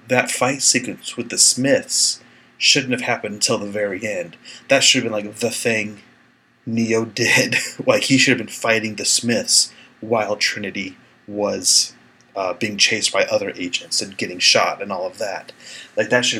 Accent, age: American, 30-49